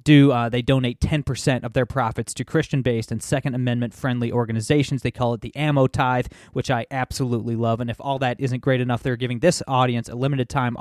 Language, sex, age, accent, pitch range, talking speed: English, male, 30-49, American, 120-140 Hz, 205 wpm